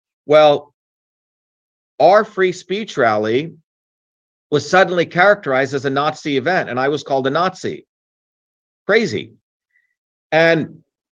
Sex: male